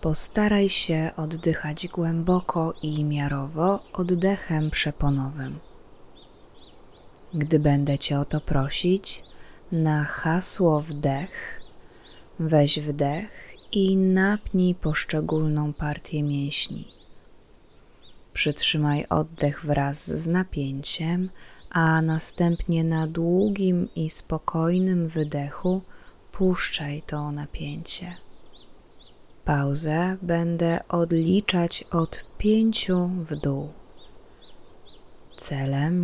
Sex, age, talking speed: female, 20-39, 80 wpm